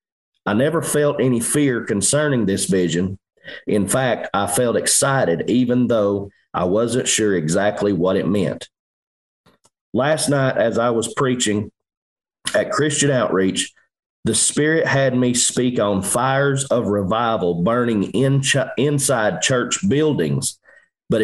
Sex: male